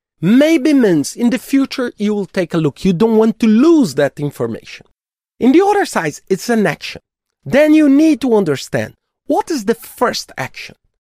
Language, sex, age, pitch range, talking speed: English, male, 40-59, 165-270 Hz, 185 wpm